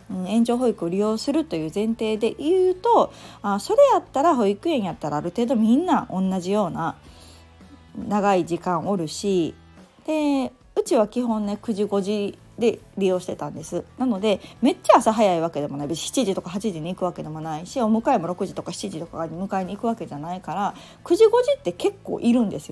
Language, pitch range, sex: Japanese, 175-250 Hz, female